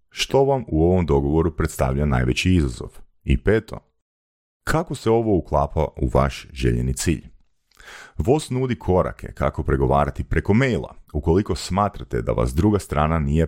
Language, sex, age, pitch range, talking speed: Croatian, male, 40-59, 70-100 Hz, 140 wpm